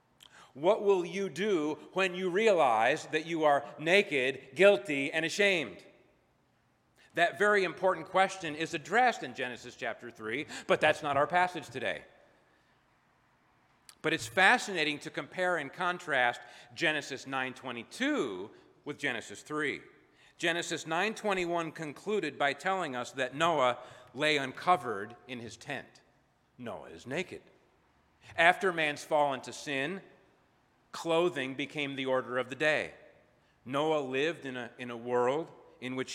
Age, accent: 40-59, American